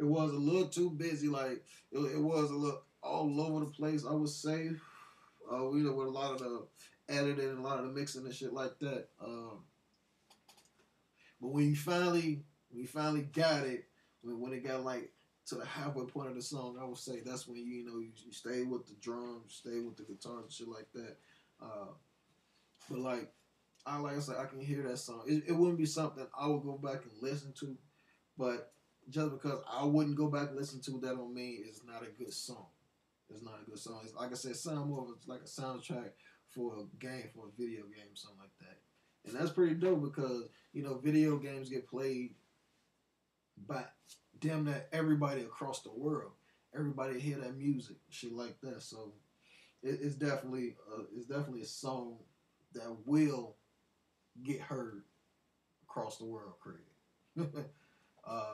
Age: 20-39